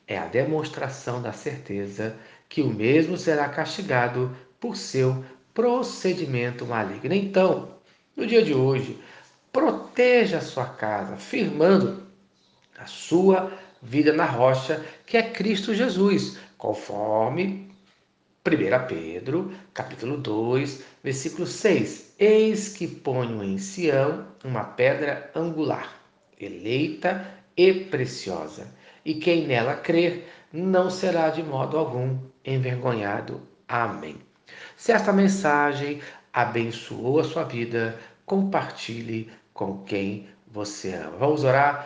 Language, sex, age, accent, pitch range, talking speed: Portuguese, male, 60-79, Brazilian, 120-175 Hz, 110 wpm